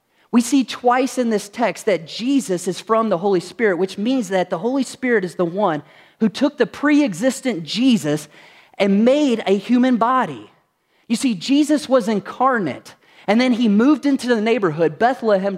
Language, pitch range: English, 175-240 Hz